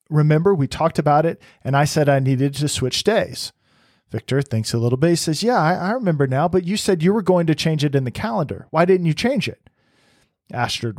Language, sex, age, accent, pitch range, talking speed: English, male, 40-59, American, 120-150 Hz, 235 wpm